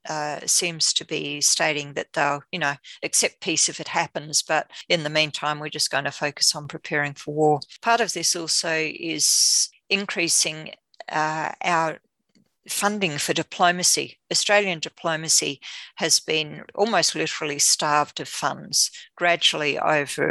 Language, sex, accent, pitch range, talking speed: English, female, Australian, 150-180 Hz, 140 wpm